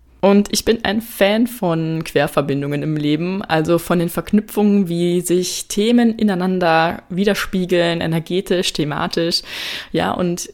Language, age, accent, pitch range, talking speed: German, 20-39, German, 165-200 Hz, 125 wpm